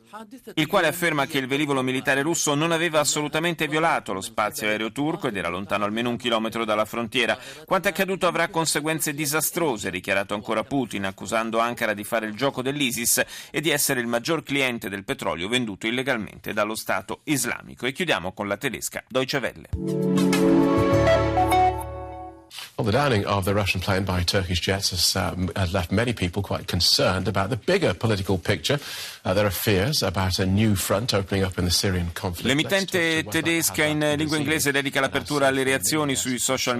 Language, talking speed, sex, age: Italian, 115 wpm, male, 40-59